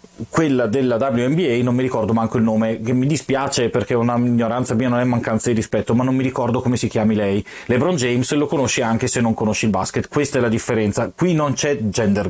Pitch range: 110-150 Hz